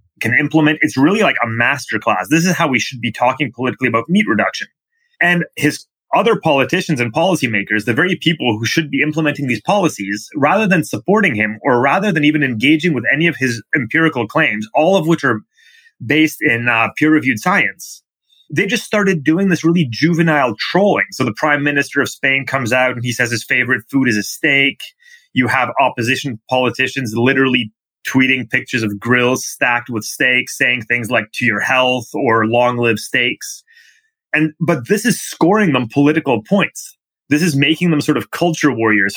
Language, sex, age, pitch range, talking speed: English, male, 30-49, 120-155 Hz, 185 wpm